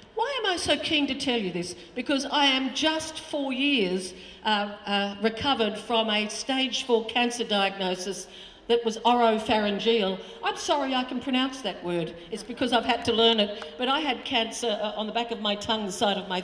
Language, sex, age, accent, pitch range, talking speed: English, female, 50-69, Australian, 210-260 Hz, 200 wpm